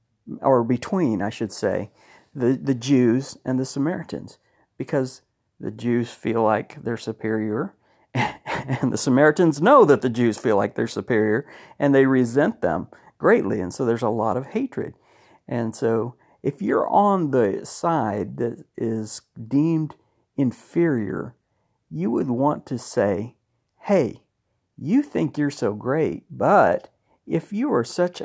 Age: 50-69